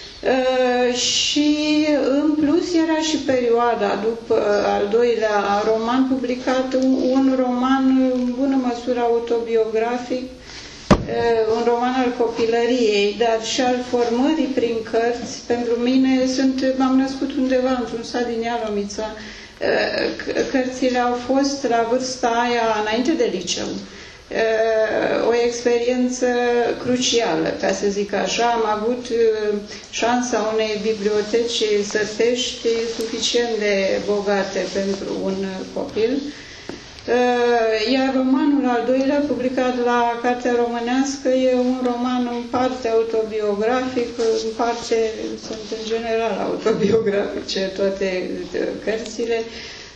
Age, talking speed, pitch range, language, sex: 30-49, 110 wpm, 225-255 Hz, Romanian, female